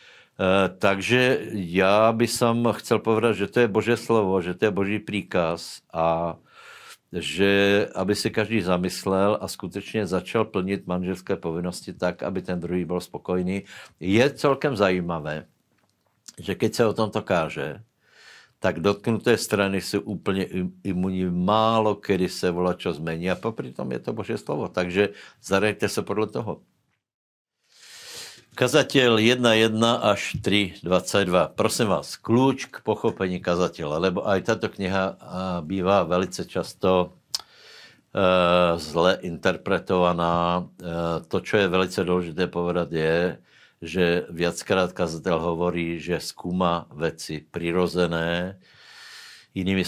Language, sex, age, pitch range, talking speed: Slovak, male, 60-79, 85-105 Hz, 125 wpm